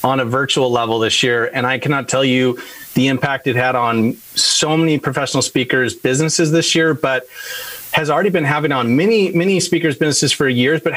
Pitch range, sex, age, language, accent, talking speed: 125-155 Hz, male, 30-49, English, American, 195 wpm